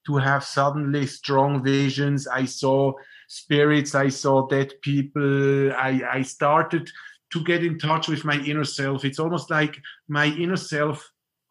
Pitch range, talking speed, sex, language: 130-150 Hz, 150 wpm, male, English